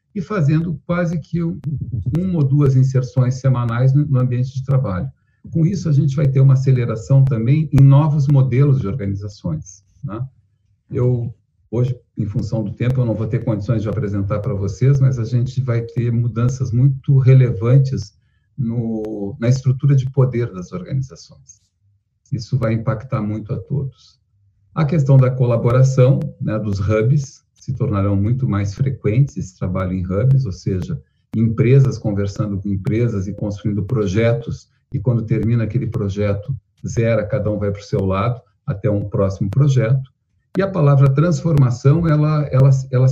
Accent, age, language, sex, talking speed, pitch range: Brazilian, 50-69, Portuguese, male, 155 wpm, 110-140 Hz